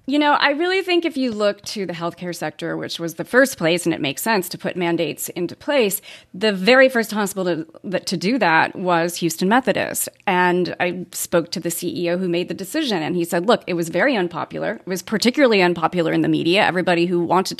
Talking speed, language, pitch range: 220 wpm, English, 170-215 Hz